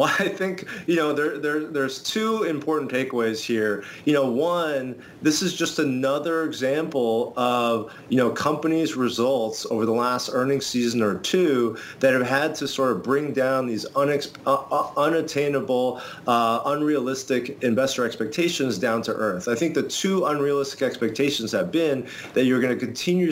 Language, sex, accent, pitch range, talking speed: English, male, American, 120-150 Hz, 165 wpm